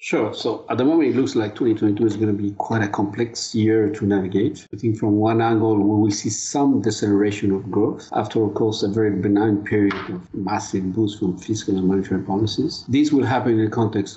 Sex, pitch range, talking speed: male, 100-115 Hz, 220 wpm